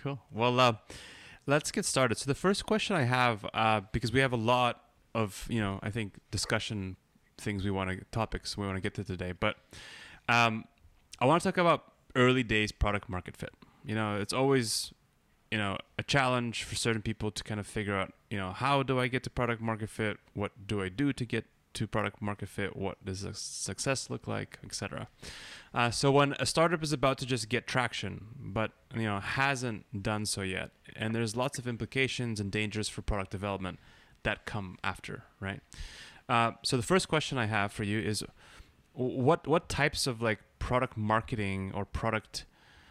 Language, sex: English, male